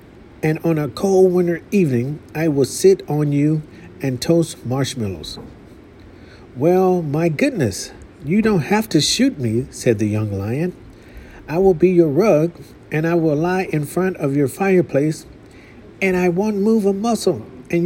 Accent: American